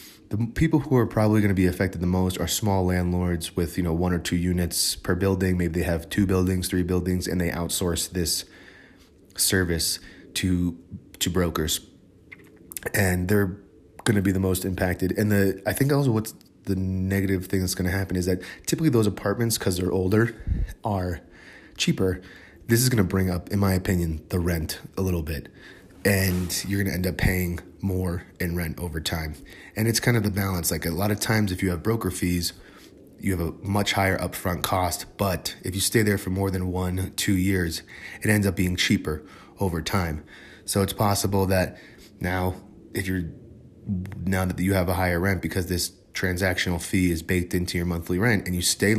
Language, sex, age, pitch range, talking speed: English, male, 30-49, 90-100 Hz, 200 wpm